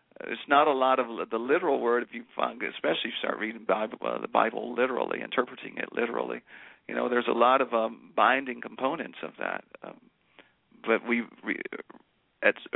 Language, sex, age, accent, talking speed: English, male, 40-59, American, 190 wpm